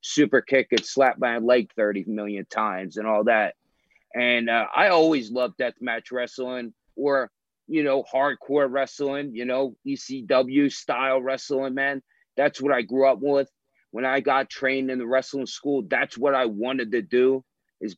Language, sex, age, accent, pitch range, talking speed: English, male, 30-49, American, 115-145 Hz, 170 wpm